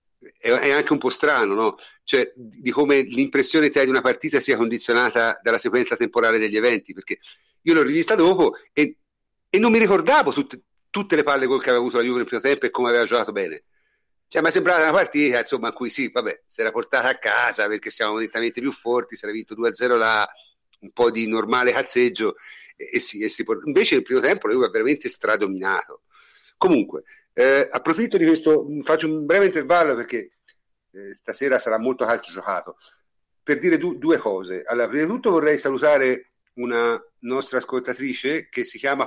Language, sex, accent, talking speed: Italian, male, native, 200 wpm